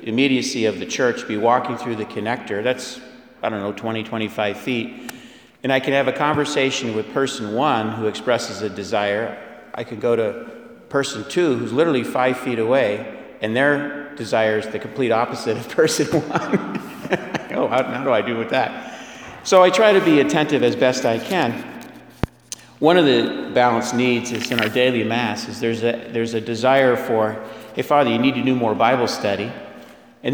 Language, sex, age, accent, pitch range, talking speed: English, male, 50-69, American, 110-135 Hz, 190 wpm